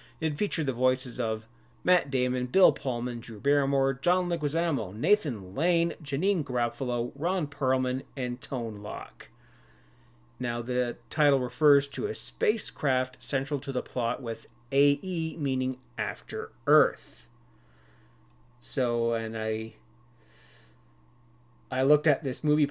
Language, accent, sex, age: English, American, male, 40-59